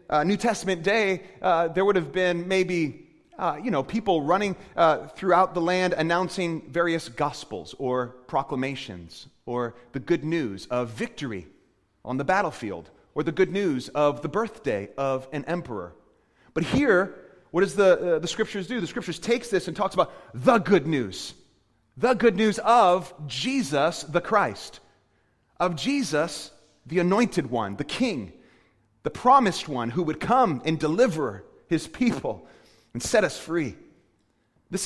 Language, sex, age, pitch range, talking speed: English, male, 30-49, 145-200 Hz, 155 wpm